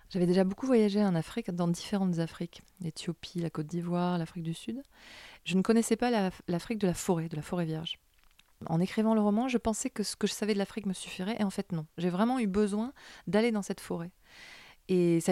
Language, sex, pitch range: French, female, 160-215 Hz